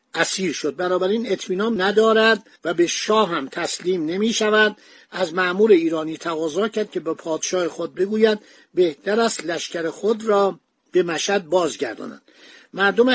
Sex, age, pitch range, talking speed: male, 60-79, 175-220 Hz, 140 wpm